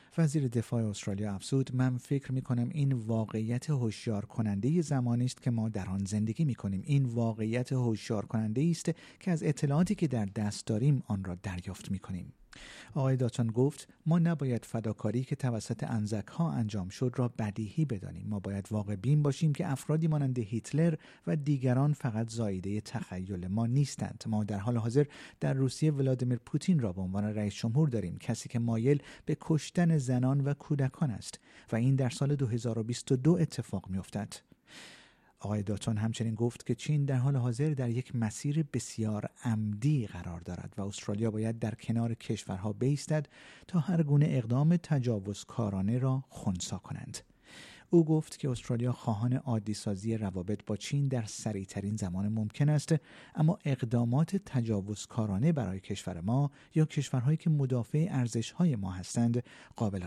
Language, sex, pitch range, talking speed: Persian, male, 105-140 Hz, 155 wpm